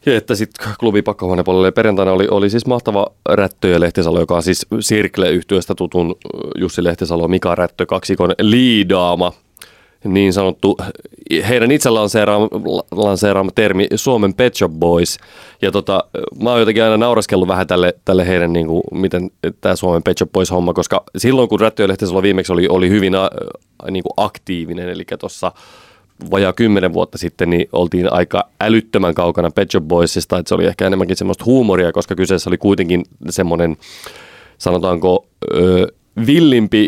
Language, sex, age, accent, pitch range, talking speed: Finnish, male, 30-49, native, 90-110 Hz, 155 wpm